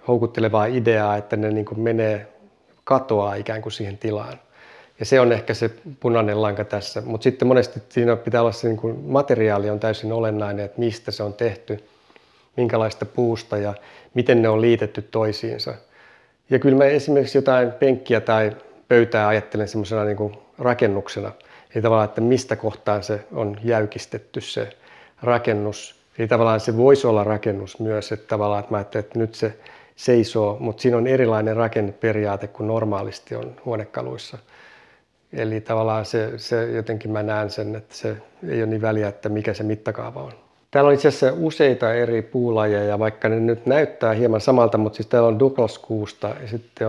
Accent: native